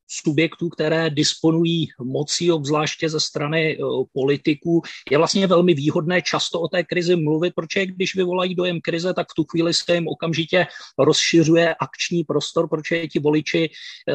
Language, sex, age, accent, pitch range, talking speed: Czech, male, 30-49, native, 150-170 Hz, 155 wpm